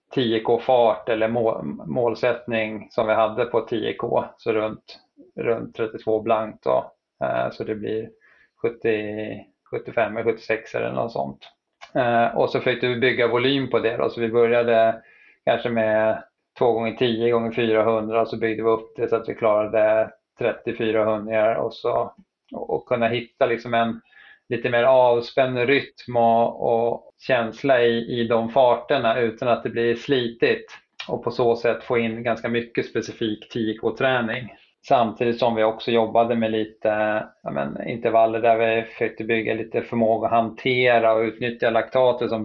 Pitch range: 110-120 Hz